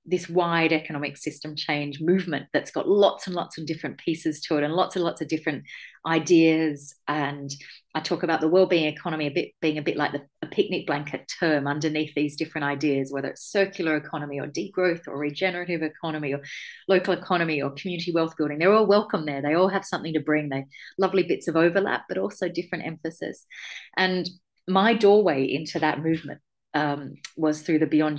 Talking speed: 195 wpm